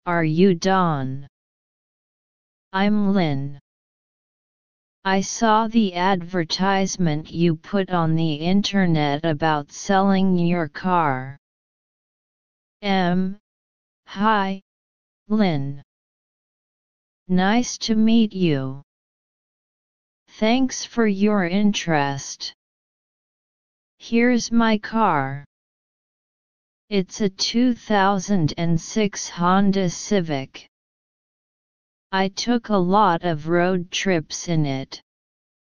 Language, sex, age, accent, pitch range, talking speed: English, female, 30-49, American, 155-200 Hz, 75 wpm